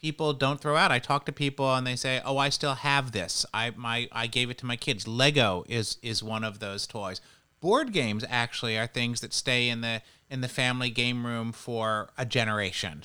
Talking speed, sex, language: 220 wpm, male, English